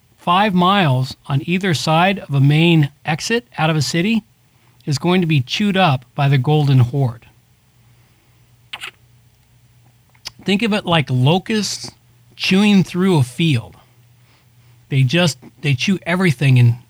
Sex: male